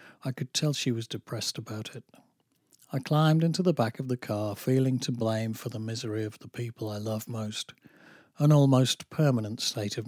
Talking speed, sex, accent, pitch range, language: 195 wpm, male, British, 110-135 Hz, English